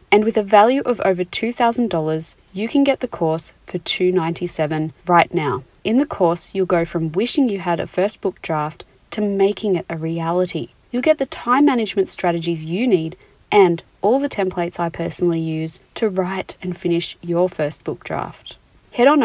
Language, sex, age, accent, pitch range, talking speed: English, female, 30-49, Australian, 170-215 Hz, 185 wpm